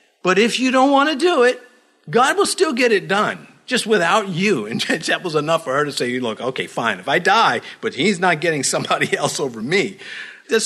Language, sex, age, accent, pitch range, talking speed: English, male, 50-69, American, 145-240 Hz, 225 wpm